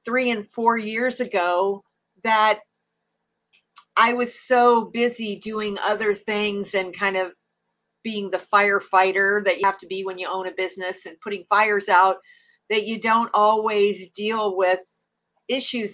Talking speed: 150 wpm